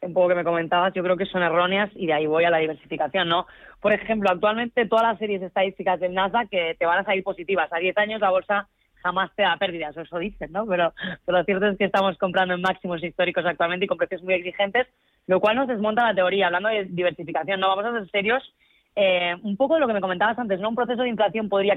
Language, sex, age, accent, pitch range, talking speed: Spanish, female, 20-39, Spanish, 180-215 Hz, 250 wpm